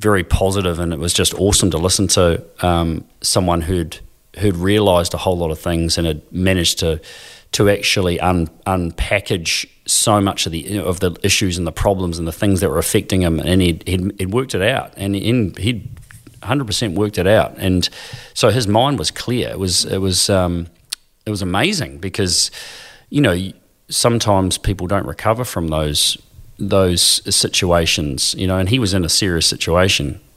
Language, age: English, 30-49